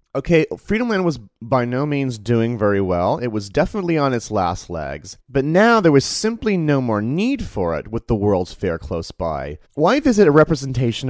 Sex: male